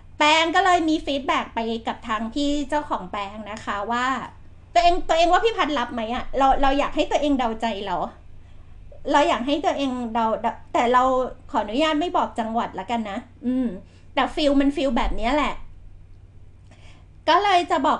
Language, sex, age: Thai, female, 30-49